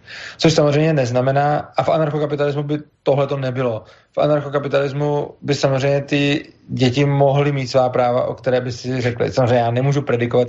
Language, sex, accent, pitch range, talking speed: Czech, male, native, 120-140 Hz, 165 wpm